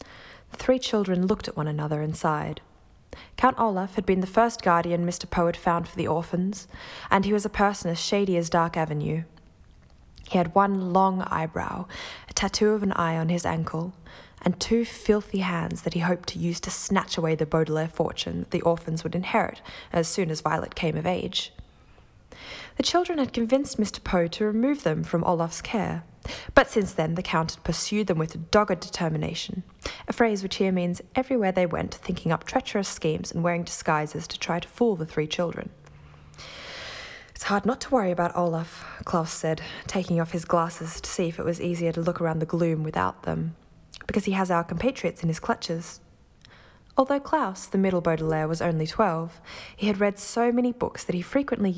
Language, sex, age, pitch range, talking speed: English, female, 20-39, 165-205 Hz, 195 wpm